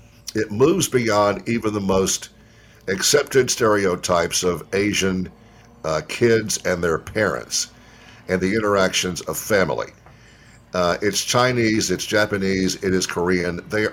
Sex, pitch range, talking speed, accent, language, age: male, 90-115 Hz, 125 wpm, American, English, 50-69